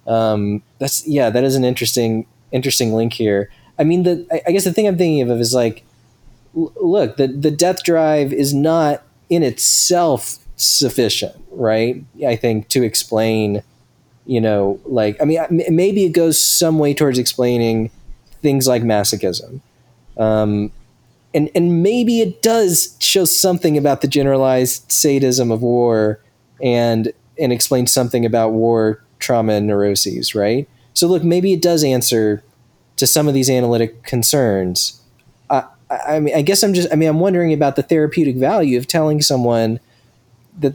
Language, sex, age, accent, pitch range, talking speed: English, male, 20-39, American, 120-155 Hz, 165 wpm